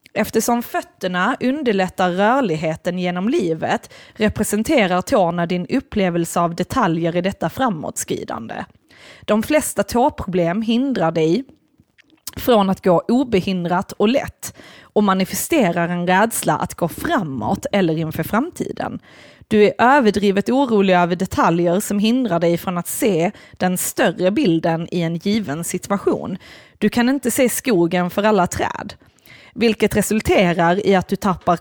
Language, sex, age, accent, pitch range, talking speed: Swedish, female, 20-39, native, 180-235 Hz, 130 wpm